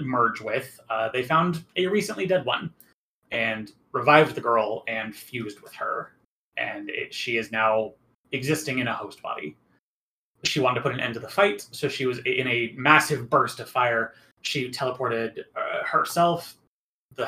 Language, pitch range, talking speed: English, 115-150 Hz, 170 wpm